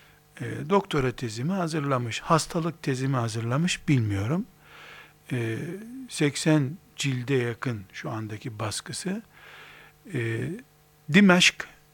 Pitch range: 145-185 Hz